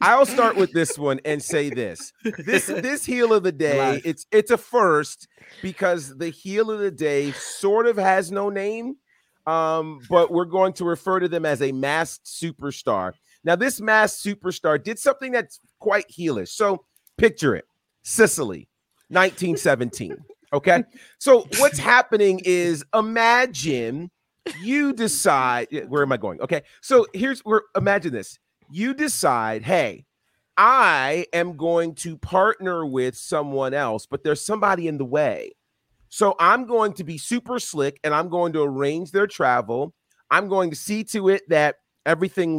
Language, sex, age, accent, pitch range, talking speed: English, male, 40-59, American, 145-210 Hz, 160 wpm